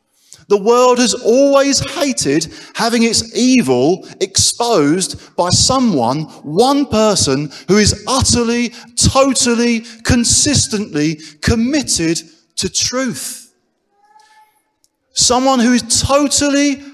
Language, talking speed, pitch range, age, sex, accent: English, 90 wpm, 185-270 Hz, 40-59, male, British